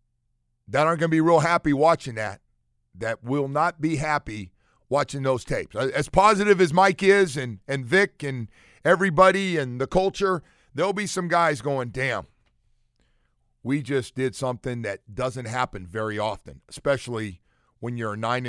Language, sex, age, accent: English, male, 50-69, American